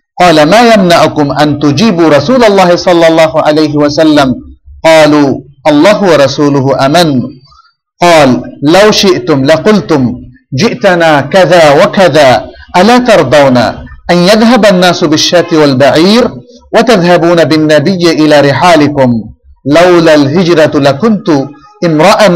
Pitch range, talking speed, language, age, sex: 145-185 Hz, 100 wpm, Bengali, 50-69, male